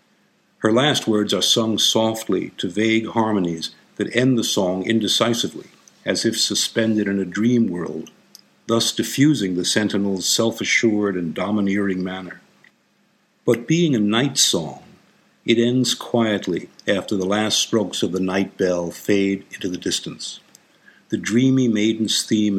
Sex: male